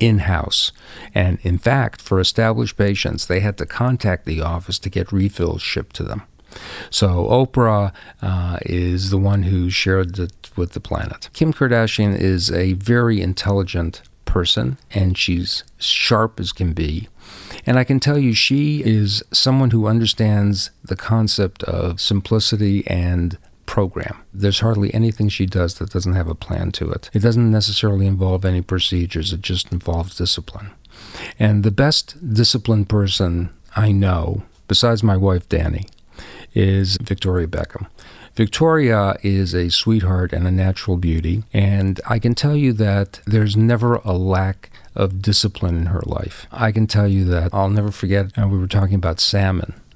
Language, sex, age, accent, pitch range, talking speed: English, male, 50-69, American, 90-110 Hz, 160 wpm